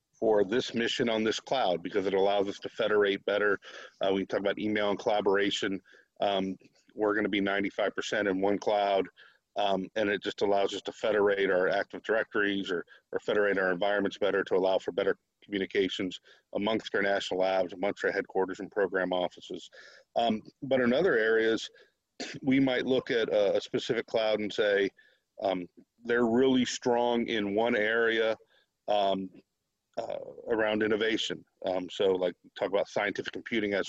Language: English